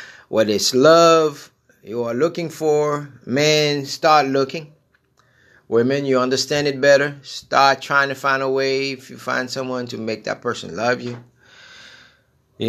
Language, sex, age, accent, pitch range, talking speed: English, male, 30-49, American, 115-140 Hz, 150 wpm